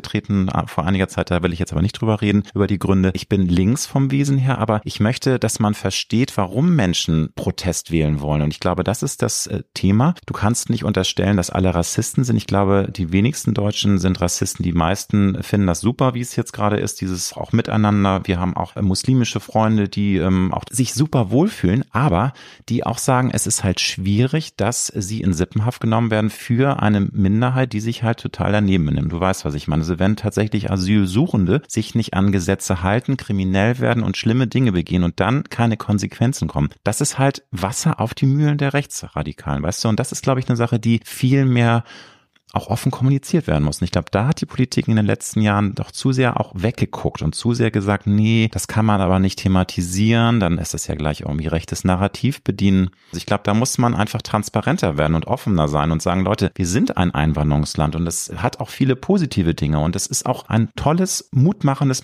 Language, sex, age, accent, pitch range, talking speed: German, male, 30-49, German, 95-120 Hz, 210 wpm